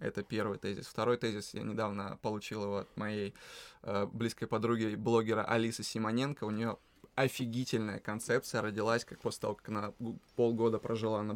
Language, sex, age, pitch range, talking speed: Russian, male, 20-39, 105-120 Hz, 160 wpm